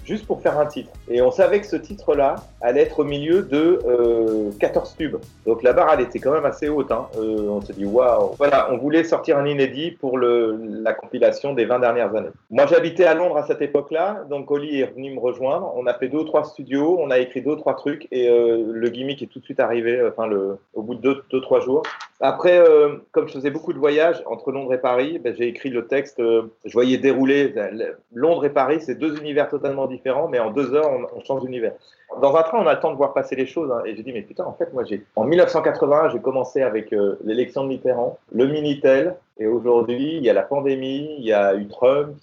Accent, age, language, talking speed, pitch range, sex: French, 30-49, French, 245 wpm, 120-155 Hz, male